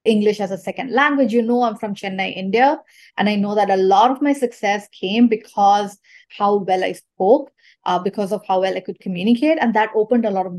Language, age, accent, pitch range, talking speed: English, 20-39, Indian, 195-245 Hz, 225 wpm